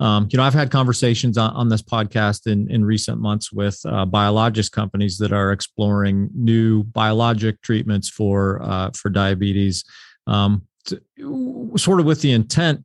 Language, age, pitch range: English, 40-59, 105-130 Hz